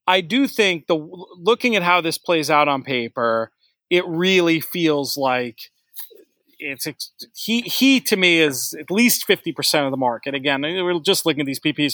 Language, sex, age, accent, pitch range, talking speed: English, male, 40-59, American, 150-195 Hz, 175 wpm